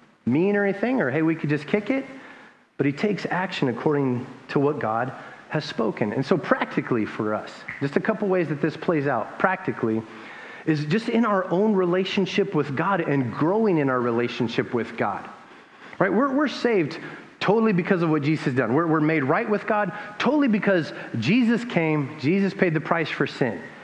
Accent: American